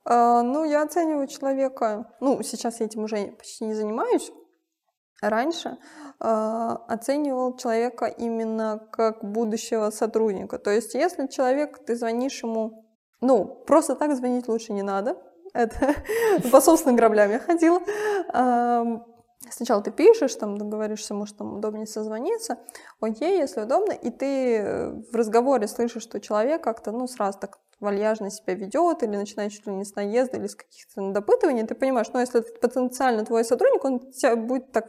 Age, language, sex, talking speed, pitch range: 20-39, Russian, female, 150 wpm, 215-265 Hz